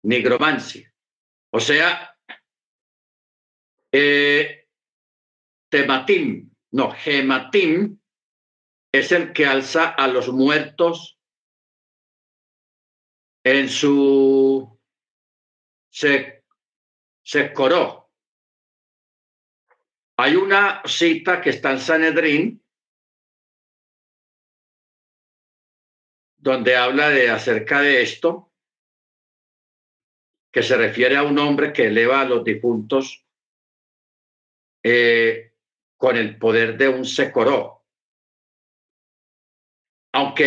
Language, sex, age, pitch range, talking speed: Spanish, male, 50-69, 125-165 Hz, 75 wpm